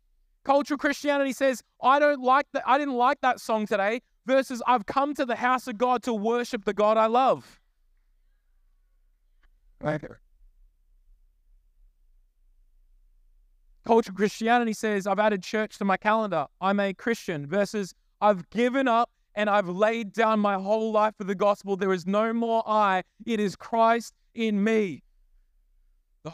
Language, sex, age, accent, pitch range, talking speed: English, male, 20-39, Australian, 155-220 Hz, 145 wpm